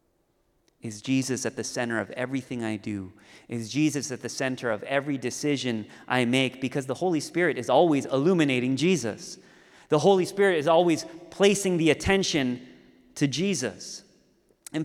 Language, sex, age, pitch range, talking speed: English, male, 30-49, 130-175 Hz, 155 wpm